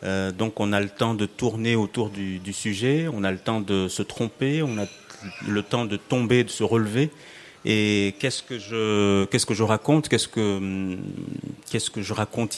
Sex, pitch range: male, 100-125 Hz